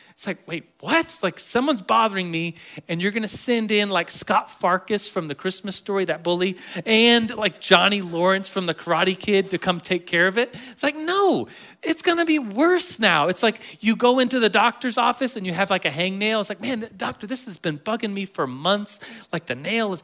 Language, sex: English, male